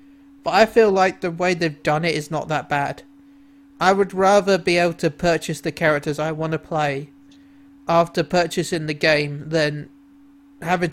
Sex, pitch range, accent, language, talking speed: male, 160-200 Hz, British, English, 175 wpm